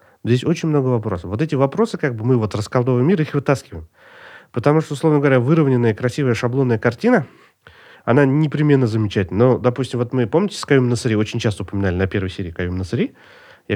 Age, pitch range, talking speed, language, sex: 30-49, 105-150 Hz, 190 wpm, Russian, male